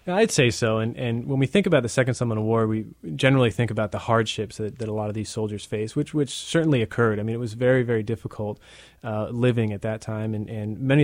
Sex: male